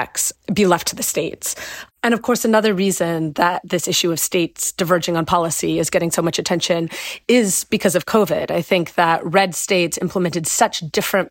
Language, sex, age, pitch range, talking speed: English, female, 30-49, 165-190 Hz, 185 wpm